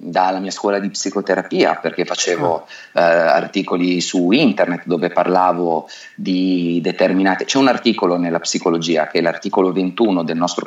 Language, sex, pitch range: Italian, male, 90-105 Hz